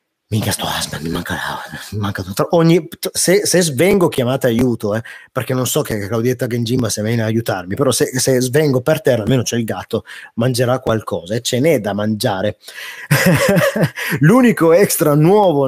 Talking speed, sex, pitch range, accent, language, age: 175 wpm, male, 115-165 Hz, native, Italian, 30-49